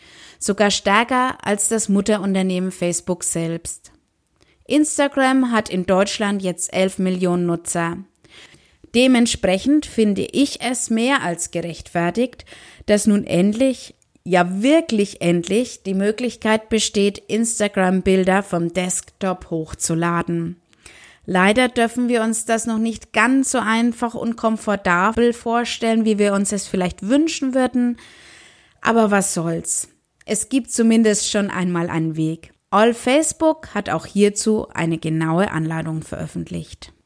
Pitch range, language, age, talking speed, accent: 175-230 Hz, German, 20-39, 120 wpm, German